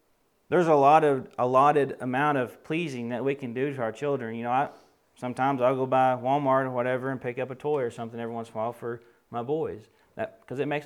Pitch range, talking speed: 120-155 Hz, 240 wpm